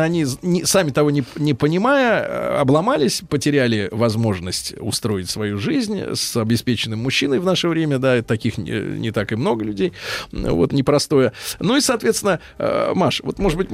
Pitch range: 125-190 Hz